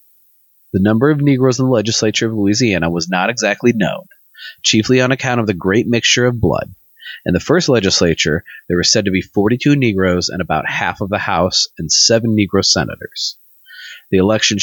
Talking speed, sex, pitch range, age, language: 190 wpm, male, 95-125 Hz, 30-49, English